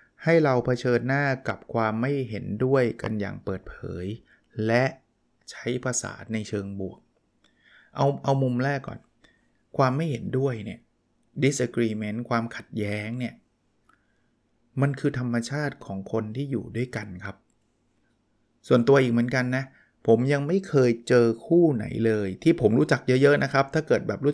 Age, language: 20-39, Thai